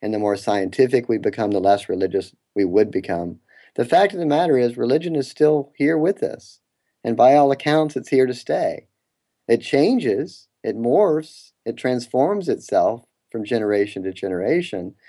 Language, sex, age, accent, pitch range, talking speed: English, male, 40-59, American, 100-135 Hz, 170 wpm